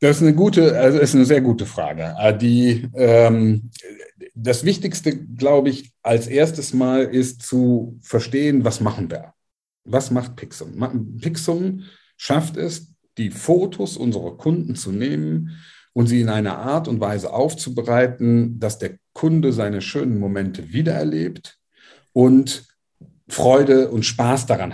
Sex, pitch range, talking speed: male, 105-135 Hz, 135 wpm